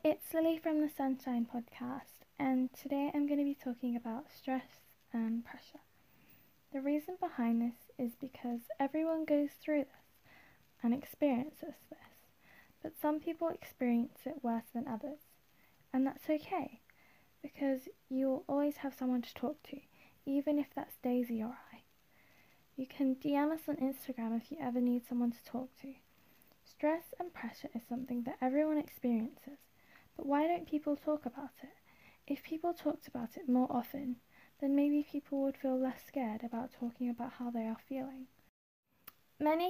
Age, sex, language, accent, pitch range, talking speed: 10-29, female, English, British, 245-290 Hz, 160 wpm